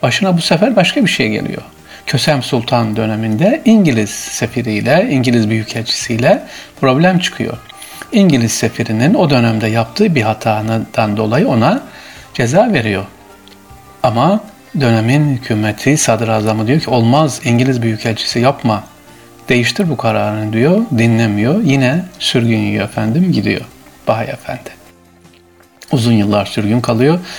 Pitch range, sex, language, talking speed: 110-165 Hz, male, Turkish, 115 wpm